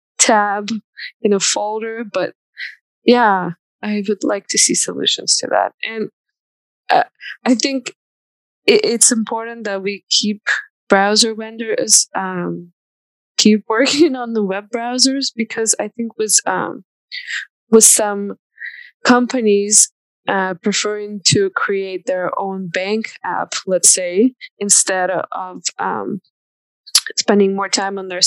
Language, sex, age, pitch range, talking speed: English, female, 20-39, 190-230 Hz, 125 wpm